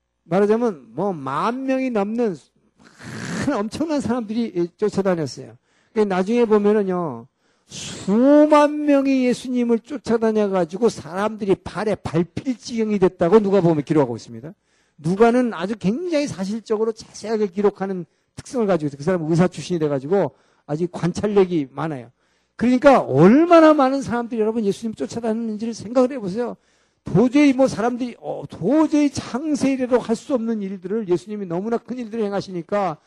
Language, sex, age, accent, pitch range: Korean, male, 50-69, native, 175-235 Hz